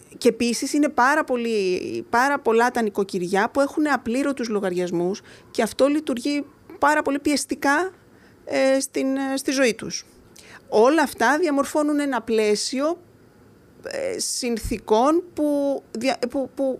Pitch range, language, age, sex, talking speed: 200-260 Hz, Greek, 30-49, female, 120 wpm